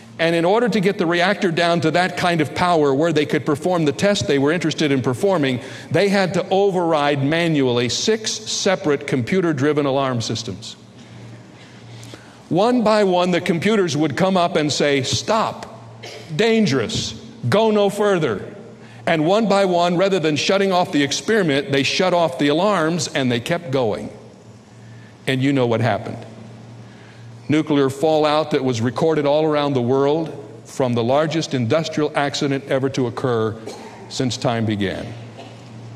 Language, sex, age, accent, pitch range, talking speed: English, male, 60-79, American, 120-170 Hz, 155 wpm